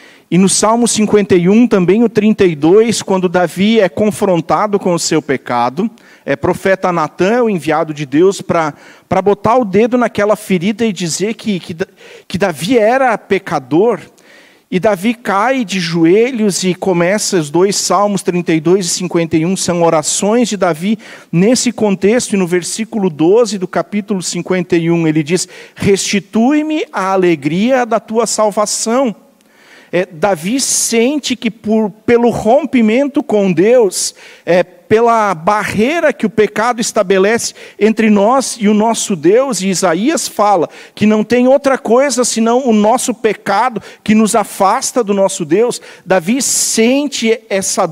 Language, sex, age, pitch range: Portuguese, male, 50-69, 185-235 Hz